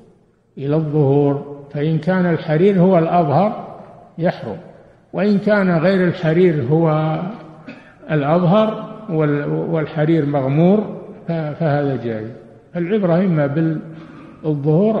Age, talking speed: 60-79, 85 wpm